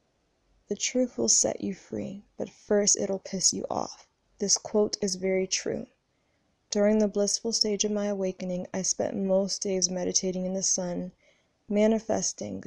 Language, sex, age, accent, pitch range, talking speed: English, female, 20-39, American, 185-205 Hz, 155 wpm